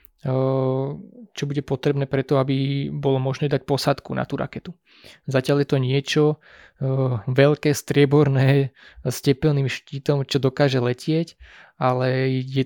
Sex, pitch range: male, 130-145 Hz